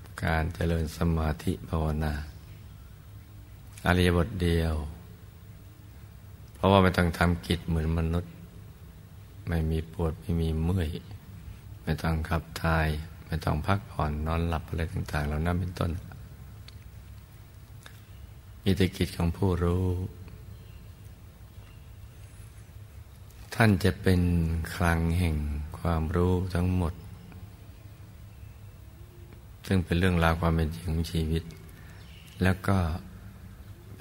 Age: 60-79